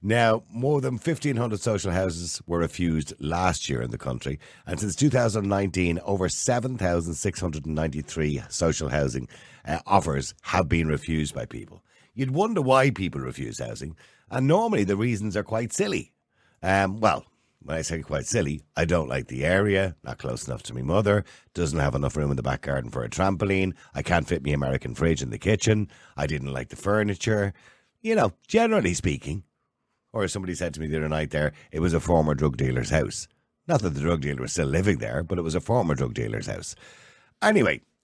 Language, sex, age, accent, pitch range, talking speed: English, male, 60-79, Irish, 75-110 Hz, 190 wpm